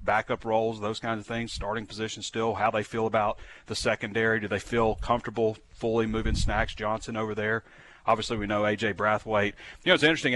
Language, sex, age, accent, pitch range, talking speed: English, male, 30-49, American, 105-125 Hz, 195 wpm